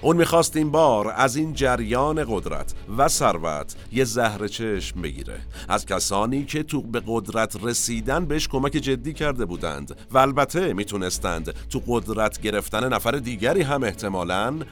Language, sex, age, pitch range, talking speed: Persian, male, 50-69, 95-130 Hz, 145 wpm